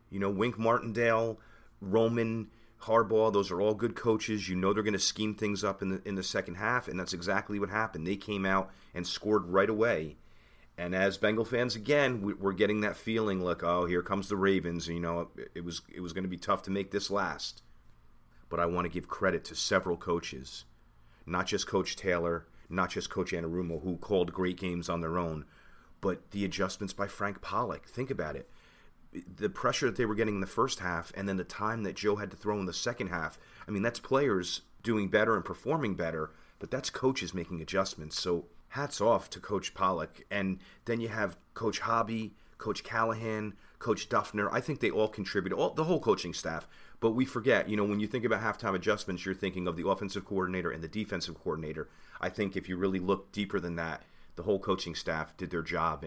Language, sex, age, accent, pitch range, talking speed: English, male, 30-49, American, 85-105 Hz, 210 wpm